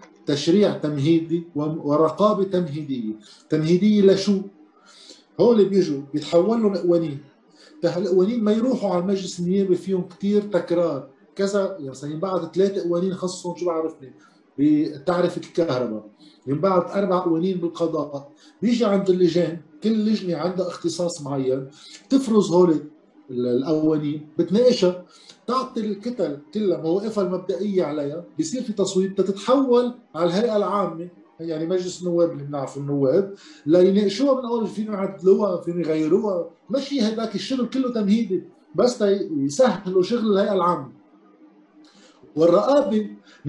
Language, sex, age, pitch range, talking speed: Arabic, male, 50-69, 155-205 Hz, 115 wpm